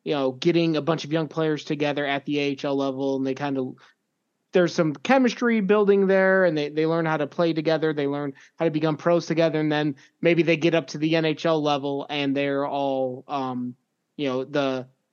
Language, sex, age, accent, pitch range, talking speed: English, male, 20-39, American, 140-170 Hz, 215 wpm